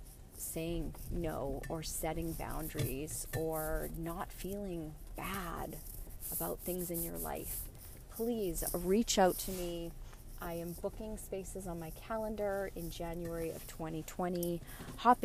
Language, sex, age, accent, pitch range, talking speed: English, female, 30-49, American, 130-185 Hz, 120 wpm